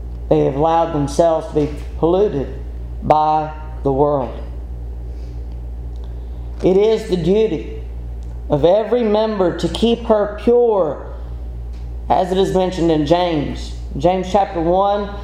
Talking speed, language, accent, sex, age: 120 wpm, English, American, male, 40-59